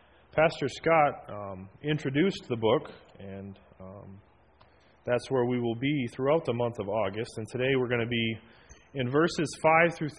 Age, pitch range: 30-49, 105-145 Hz